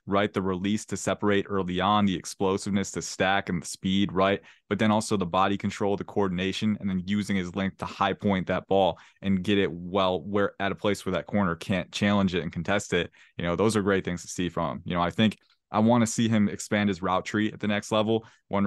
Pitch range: 90-100 Hz